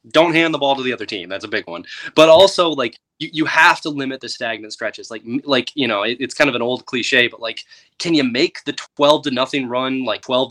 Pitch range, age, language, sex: 115-150 Hz, 20-39, English, male